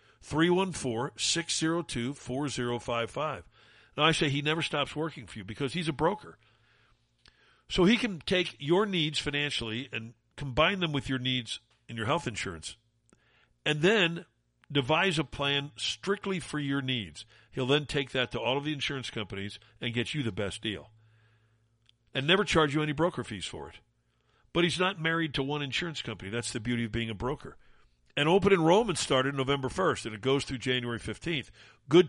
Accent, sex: American, male